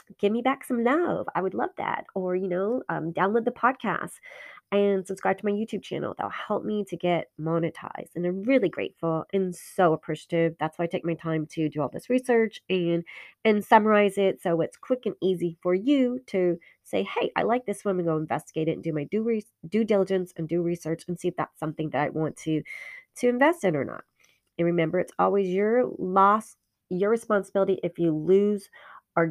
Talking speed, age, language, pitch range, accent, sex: 215 wpm, 30-49, English, 165-215 Hz, American, female